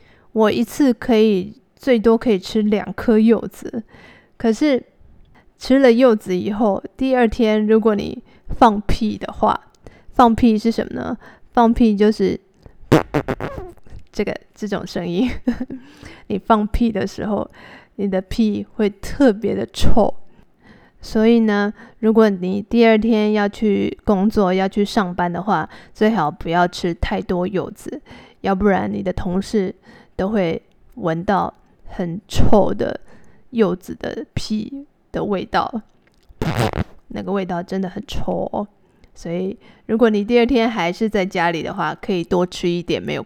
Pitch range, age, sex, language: 190-230 Hz, 20-39, female, Chinese